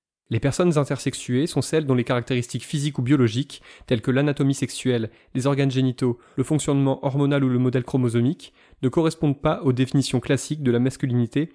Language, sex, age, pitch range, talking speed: French, male, 20-39, 125-145 Hz, 175 wpm